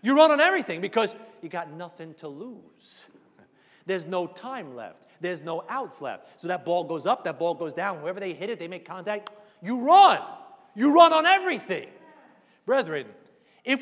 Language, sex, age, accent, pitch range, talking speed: English, male, 30-49, American, 185-310 Hz, 180 wpm